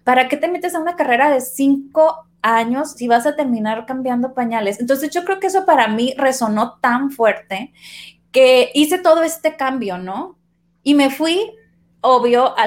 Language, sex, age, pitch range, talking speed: Spanish, female, 20-39, 210-290 Hz, 175 wpm